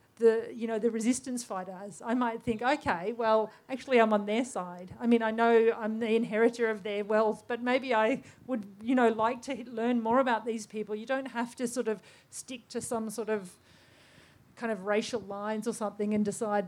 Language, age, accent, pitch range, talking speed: English, 40-59, Australian, 215-240 Hz, 210 wpm